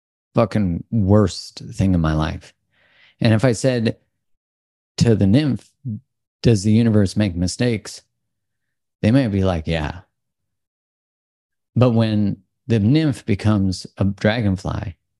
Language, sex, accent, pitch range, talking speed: English, male, American, 85-110 Hz, 120 wpm